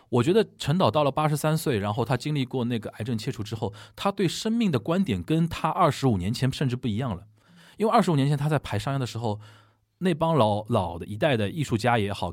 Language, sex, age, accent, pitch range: Chinese, male, 20-39, native, 110-155 Hz